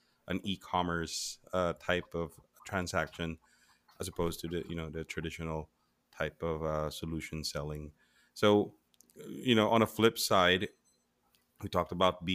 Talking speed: 145 wpm